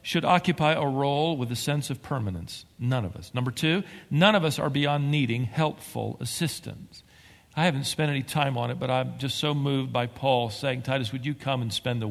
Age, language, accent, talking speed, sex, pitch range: 50-69, English, American, 220 wpm, male, 110-145 Hz